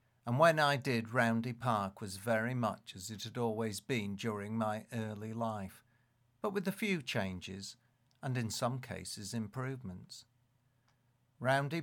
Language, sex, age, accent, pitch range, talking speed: English, male, 50-69, British, 110-125 Hz, 145 wpm